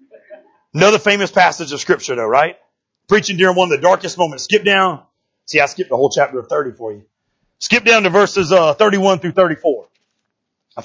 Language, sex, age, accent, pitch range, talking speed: English, male, 40-59, American, 150-225 Hz, 195 wpm